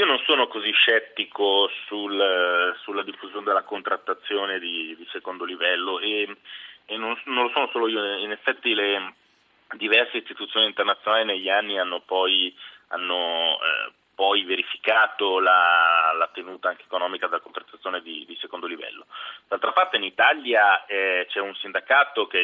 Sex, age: male, 30-49